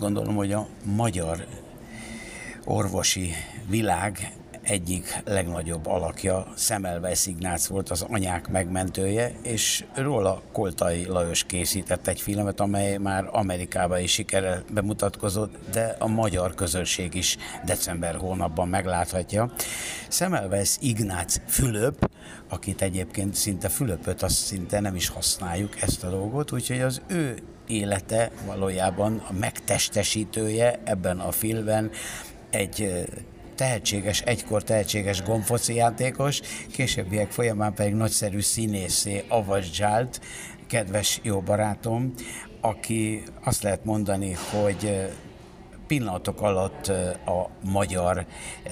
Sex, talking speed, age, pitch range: male, 105 wpm, 60-79, 90-110 Hz